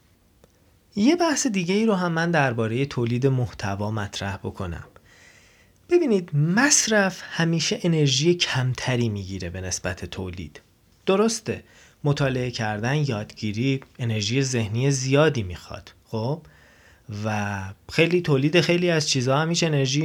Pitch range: 105-175 Hz